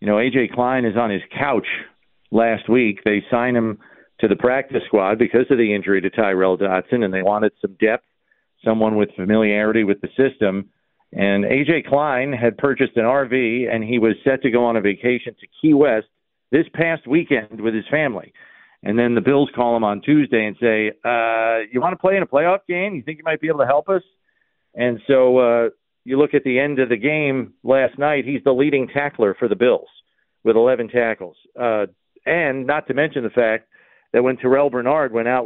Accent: American